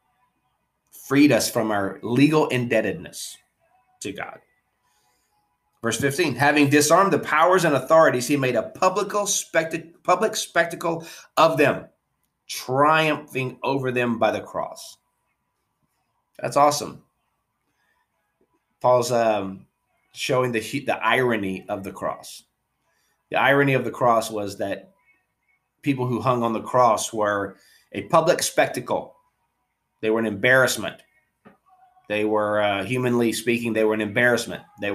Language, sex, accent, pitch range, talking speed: English, male, American, 110-145 Hz, 125 wpm